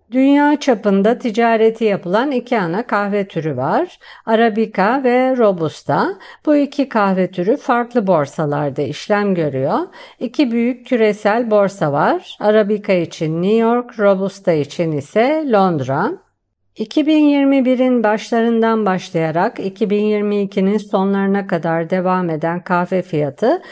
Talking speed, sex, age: 110 wpm, female, 50-69